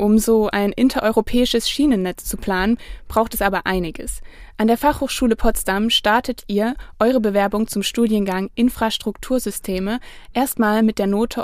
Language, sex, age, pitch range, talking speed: German, female, 20-39, 195-245 Hz, 135 wpm